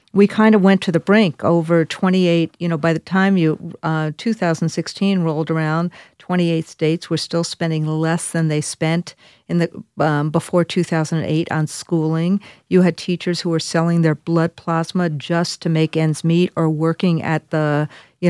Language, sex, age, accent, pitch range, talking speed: English, female, 50-69, American, 160-195 Hz, 175 wpm